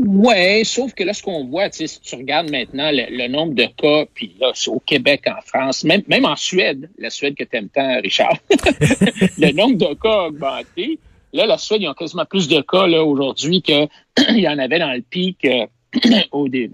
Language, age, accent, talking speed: French, 60-79, Canadian, 220 wpm